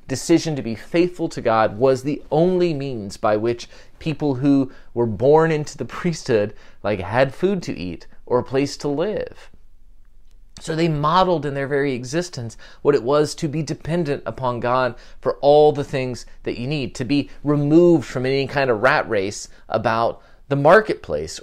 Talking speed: 175 wpm